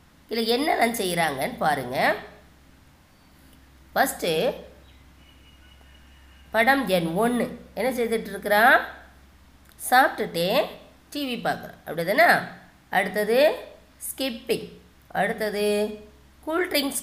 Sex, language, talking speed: female, Tamil, 65 wpm